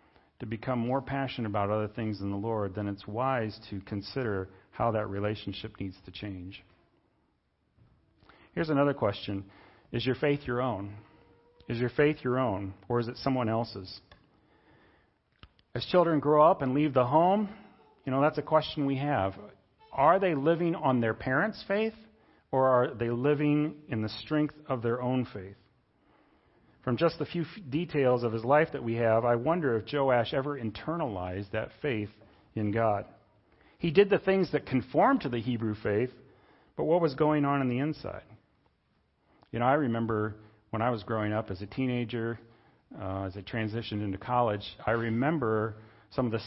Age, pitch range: 40-59, 105-140 Hz